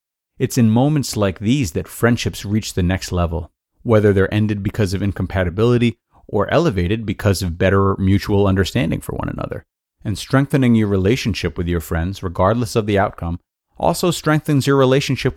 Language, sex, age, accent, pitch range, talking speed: English, male, 30-49, American, 95-115 Hz, 165 wpm